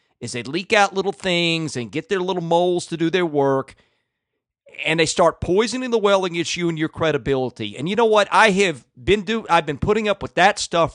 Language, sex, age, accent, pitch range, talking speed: English, male, 40-59, American, 135-200 Hz, 215 wpm